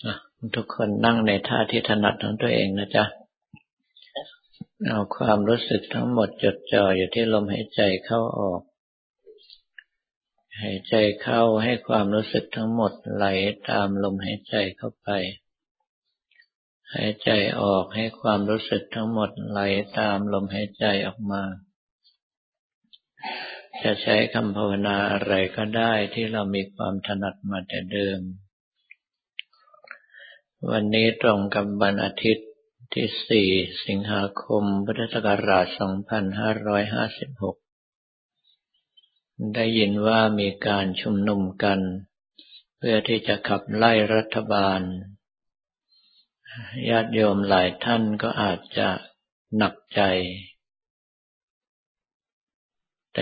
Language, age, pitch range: Thai, 50-69, 100-115 Hz